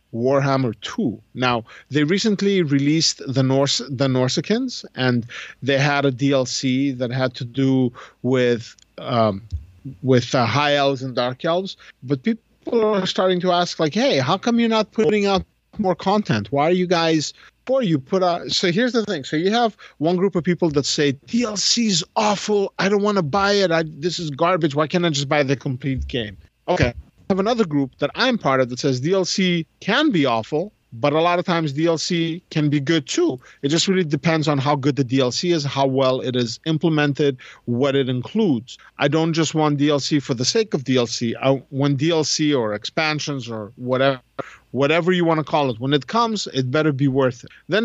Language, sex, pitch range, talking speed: English, male, 135-180 Hz, 200 wpm